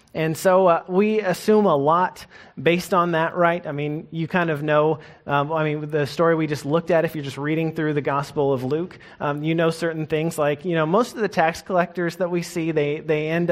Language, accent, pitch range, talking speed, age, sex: English, American, 145-170 Hz, 240 wpm, 30-49, male